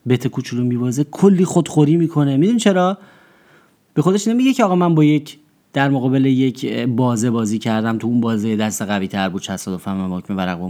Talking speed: 180 wpm